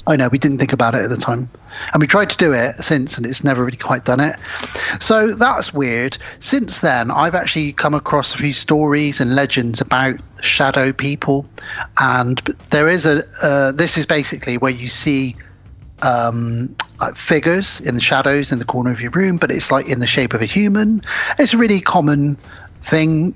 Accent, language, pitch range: British, English, 125-155 Hz